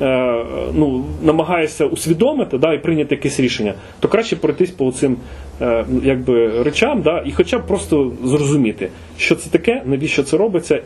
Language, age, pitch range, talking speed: Ukrainian, 30-49, 125-160 Hz, 145 wpm